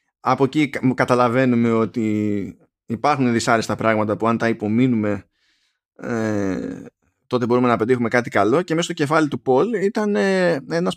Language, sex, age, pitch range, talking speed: Greek, male, 20-39, 115-180 Hz, 150 wpm